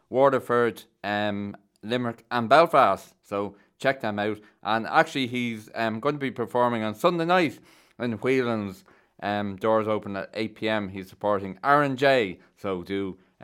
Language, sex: English, male